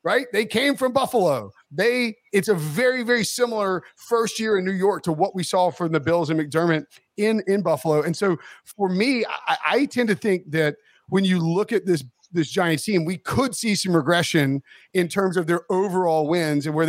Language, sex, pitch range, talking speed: English, male, 155-200 Hz, 210 wpm